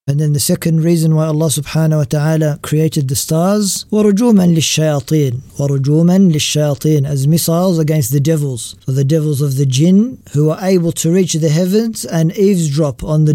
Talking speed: 180 wpm